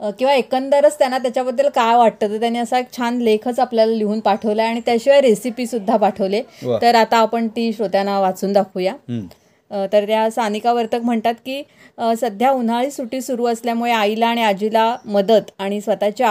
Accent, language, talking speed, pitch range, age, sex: native, Marathi, 160 wpm, 205-250 Hz, 30-49, female